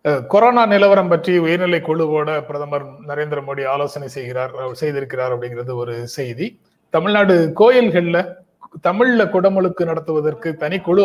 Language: Tamil